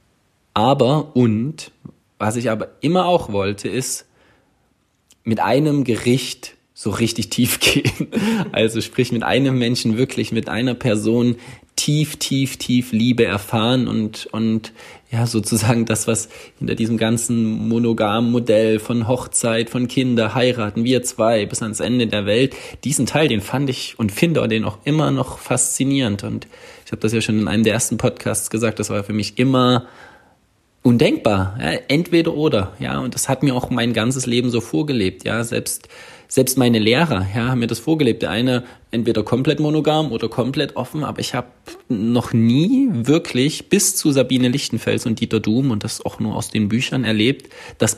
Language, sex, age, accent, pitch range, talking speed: German, male, 20-39, German, 110-130 Hz, 175 wpm